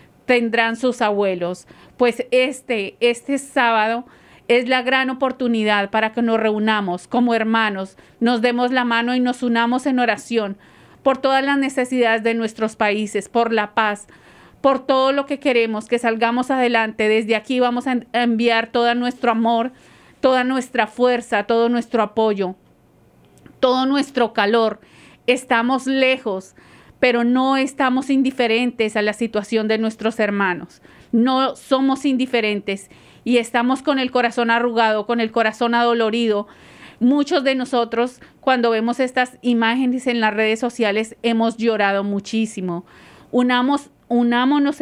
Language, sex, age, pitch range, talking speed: English, female, 40-59, 220-255 Hz, 135 wpm